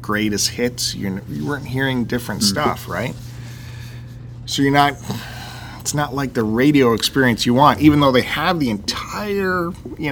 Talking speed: 155 wpm